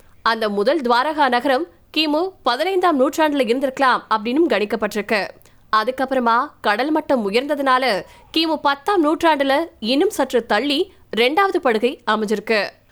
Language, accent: Tamil, native